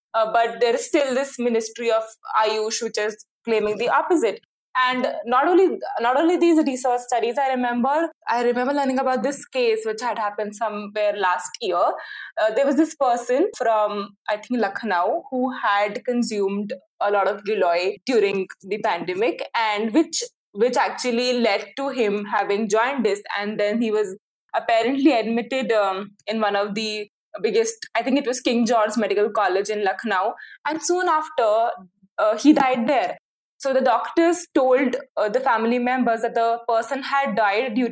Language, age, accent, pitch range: English, 20-39, Indian, 210-275 Hz